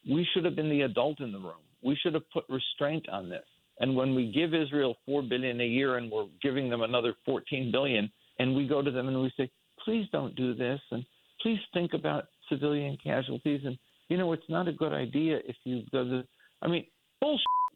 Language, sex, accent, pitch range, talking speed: English, male, American, 115-165 Hz, 215 wpm